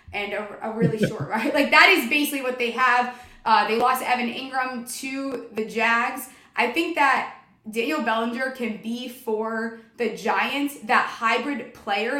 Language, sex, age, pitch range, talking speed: English, female, 20-39, 220-255 Hz, 165 wpm